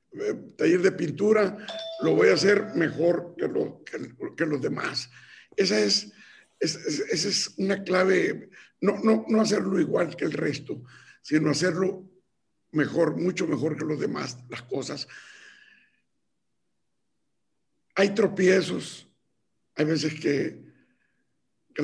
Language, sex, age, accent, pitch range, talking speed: Spanish, male, 60-79, Mexican, 150-190 Hz, 125 wpm